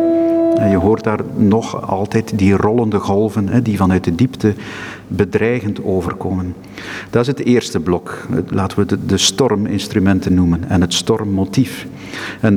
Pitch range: 100-140 Hz